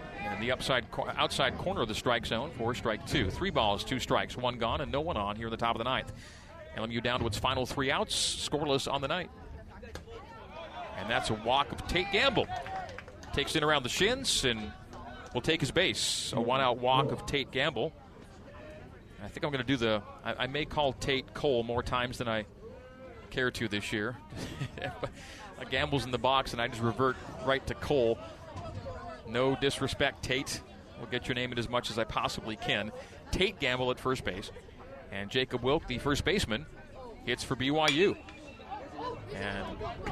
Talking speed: 190 wpm